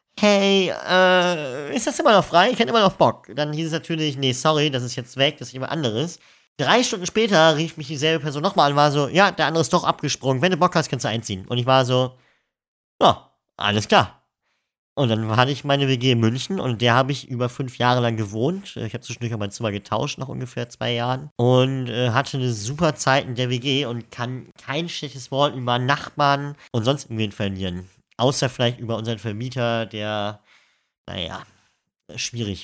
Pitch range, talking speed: 110-145 Hz, 210 wpm